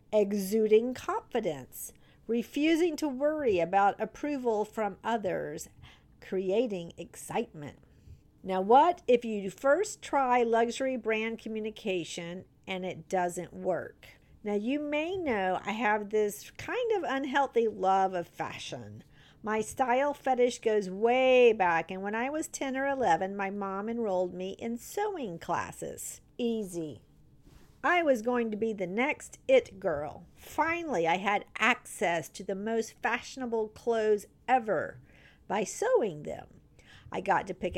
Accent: American